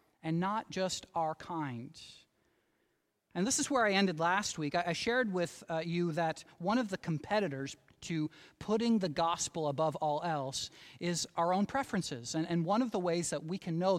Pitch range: 165-235 Hz